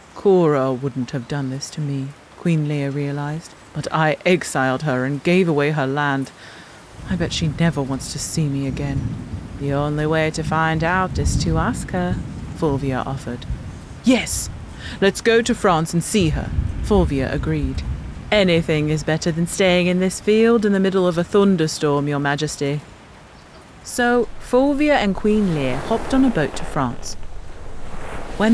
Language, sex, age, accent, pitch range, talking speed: English, female, 30-49, British, 145-215 Hz, 165 wpm